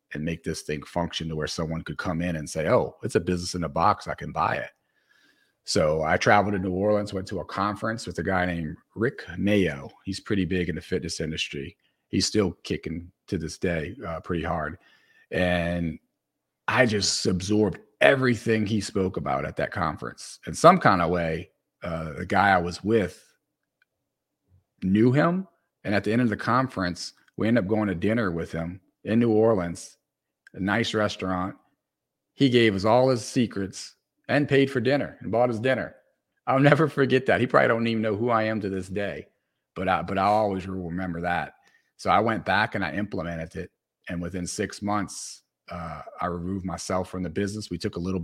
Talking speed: 200 wpm